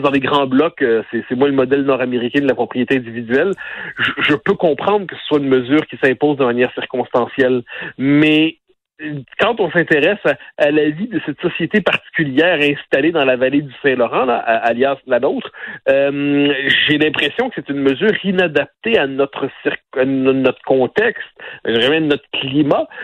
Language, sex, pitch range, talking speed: French, male, 135-175 Hz, 170 wpm